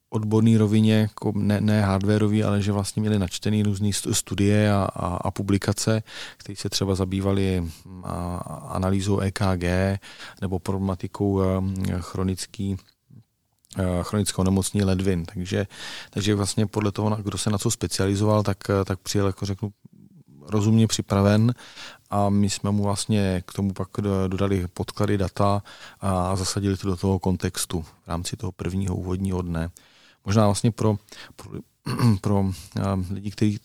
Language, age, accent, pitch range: Czech, 30-49, native, 95-105 Hz